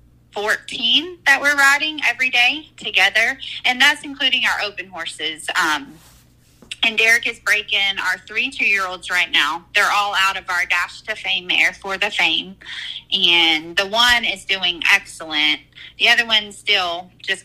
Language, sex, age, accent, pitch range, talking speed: English, female, 20-39, American, 175-210 Hz, 160 wpm